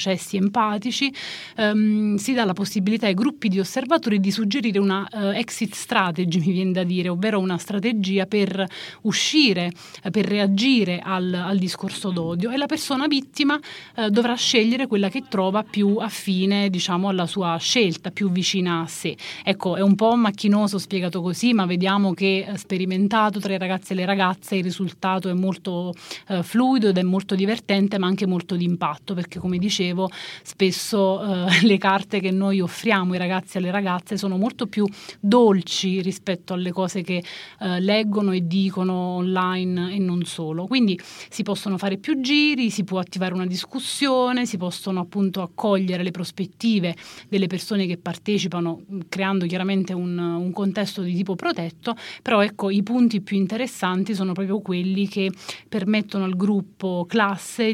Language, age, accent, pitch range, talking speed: Italian, 30-49, native, 185-210 Hz, 165 wpm